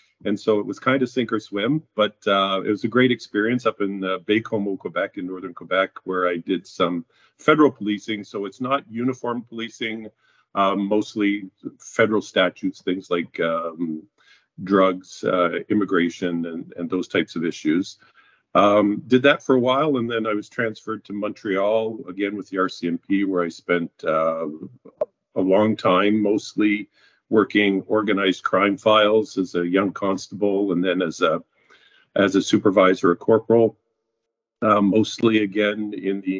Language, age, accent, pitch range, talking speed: English, 50-69, American, 95-110 Hz, 165 wpm